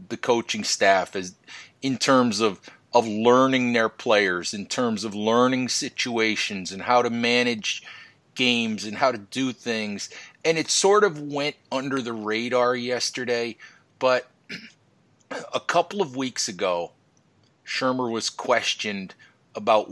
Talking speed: 135 wpm